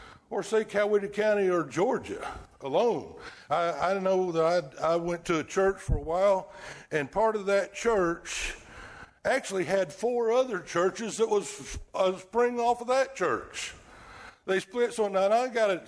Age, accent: 60-79, American